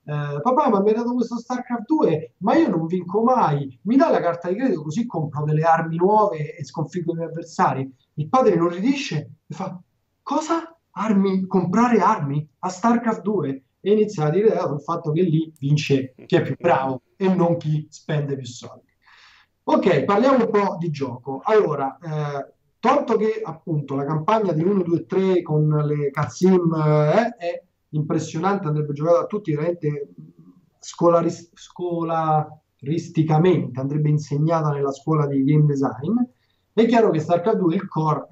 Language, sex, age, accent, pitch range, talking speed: Italian, male, 30-49, native, 145-195 Hz, 170 wpm